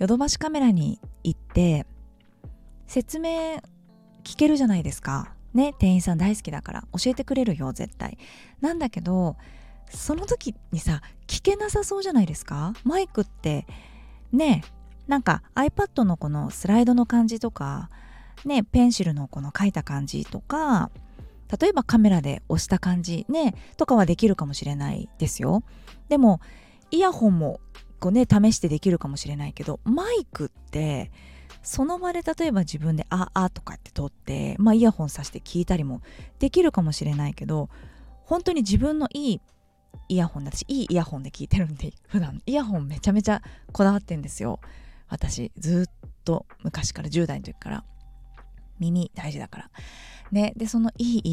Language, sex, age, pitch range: Japanese, female, 20-39, 160-255 Hz